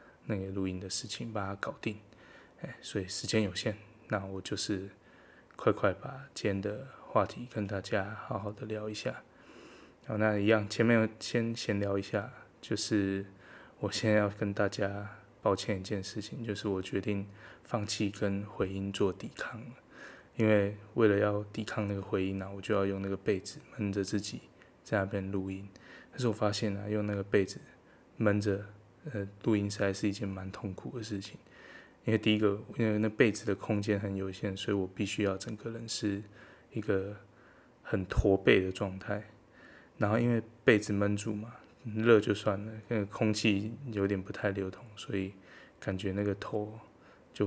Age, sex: 10-29, male